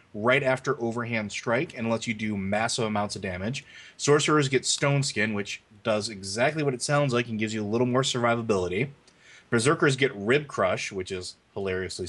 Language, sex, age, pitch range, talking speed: English, male, 30-49, 105-125 Hz, 185 wpm